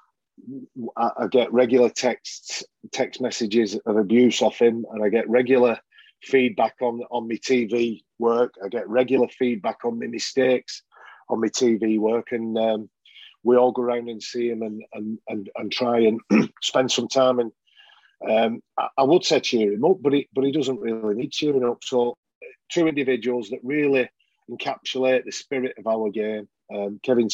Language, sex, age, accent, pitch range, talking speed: English, male, 40-59, British, 110-125 Hz, 175 wpm